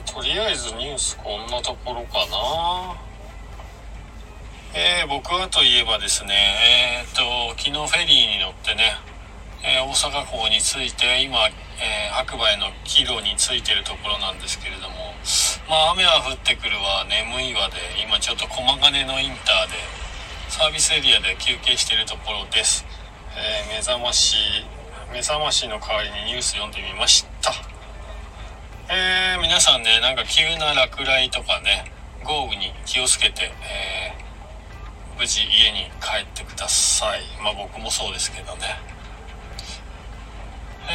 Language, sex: Japanese, male